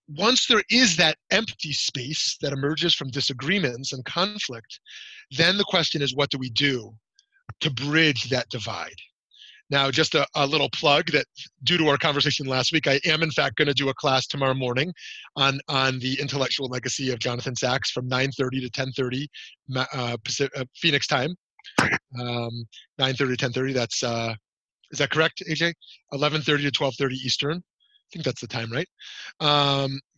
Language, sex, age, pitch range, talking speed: English, male, 30-49, 130-160 Hz, 170 wpm